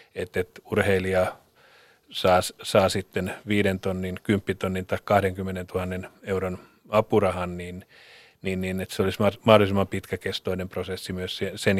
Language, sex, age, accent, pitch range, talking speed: Finnish, male, 30-49, native, 95-105 Hz, 130 wpm